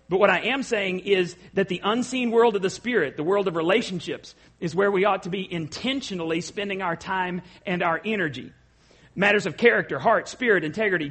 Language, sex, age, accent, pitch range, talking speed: English, male, 40-59, American, 160-215 Hz, 195 wpm